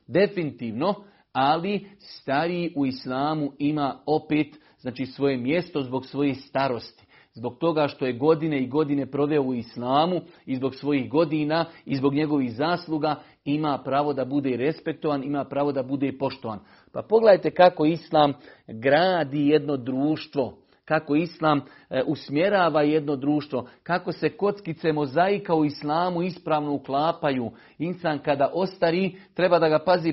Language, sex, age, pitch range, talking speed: Croatian, male, 50-69, 140-175 Hz, 135 wpm